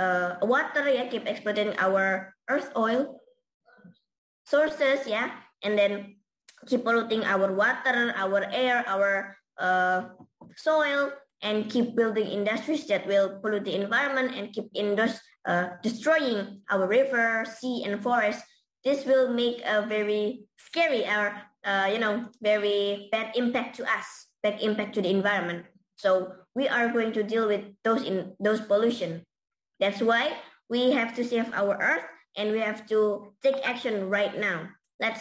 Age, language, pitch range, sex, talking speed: 20-39, English, 200-235 Hz, male, 155 wpm